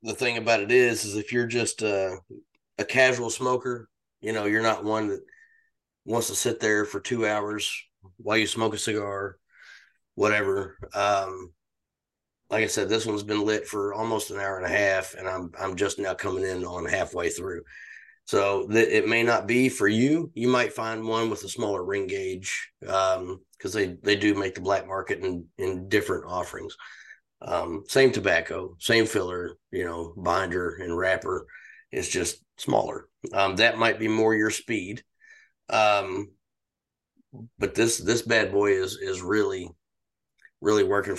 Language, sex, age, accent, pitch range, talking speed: English, male, 30-49, American, 100-135 Hz, 170 wpm